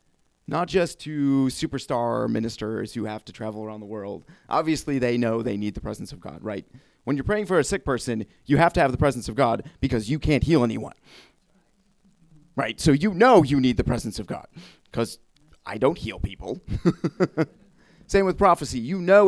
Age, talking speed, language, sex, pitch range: 30-49, 195 wpm, English, male, 110-155 Hz